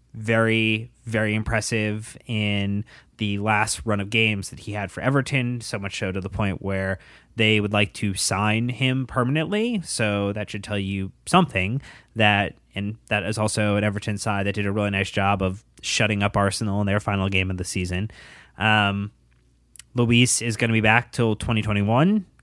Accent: American